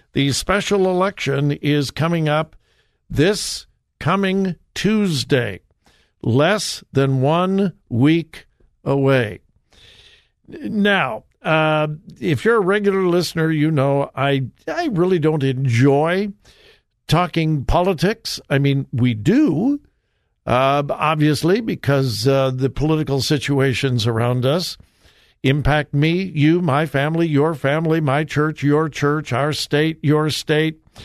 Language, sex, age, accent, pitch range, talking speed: English, male, 60-79, American, 135-175 Hz, 110 wpm